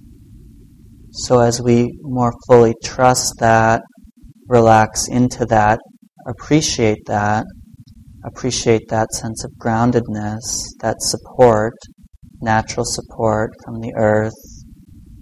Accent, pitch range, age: American, 110-120 Hz, 40-59